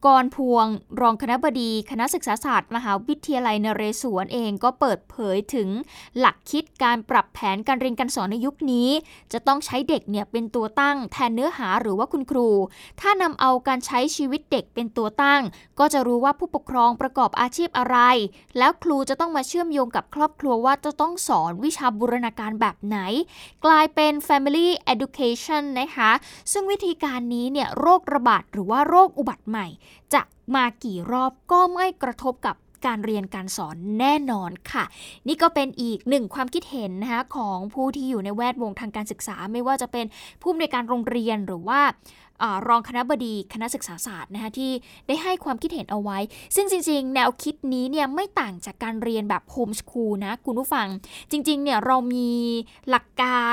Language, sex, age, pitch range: Thai, female, 20-39, 225-285 Hz